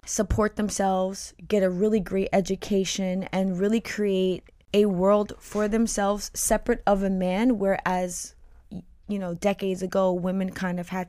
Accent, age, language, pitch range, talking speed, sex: American, 20-39, English, 185-215 Hz, 145 wpm, female